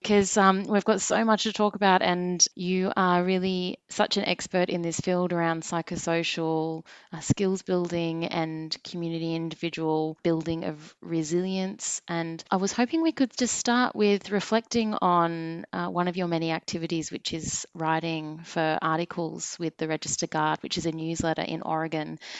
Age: 20-39